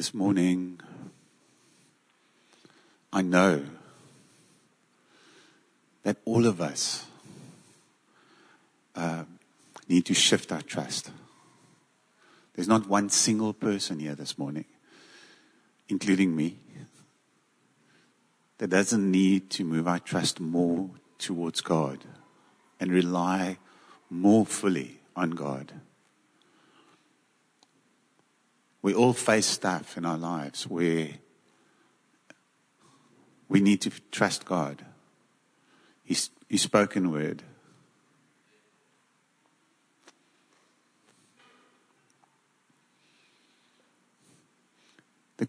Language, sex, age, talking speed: English, male, 50-69, 75 wpm